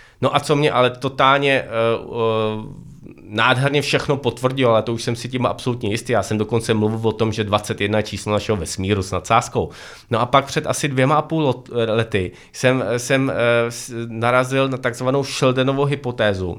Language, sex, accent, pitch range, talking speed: Czech, male, native, 110-140 Hz, 180 wpm